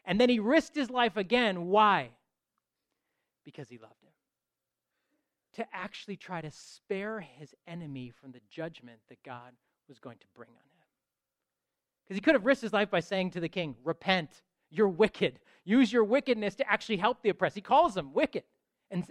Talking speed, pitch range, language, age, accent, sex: 180 wpm, 145-215 Hz, English, 30-49, American, male